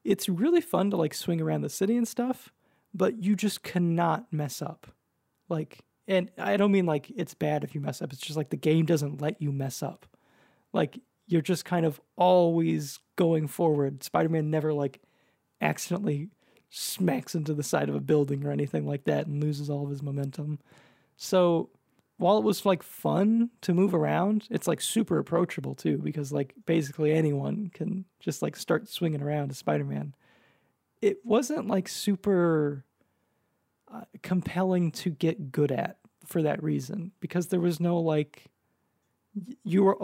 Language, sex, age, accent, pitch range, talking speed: English, male, 20-39, American, 145-190 Hz, 170 wpm